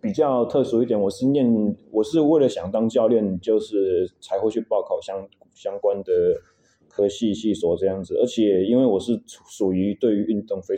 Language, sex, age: Chinese, male, 20-39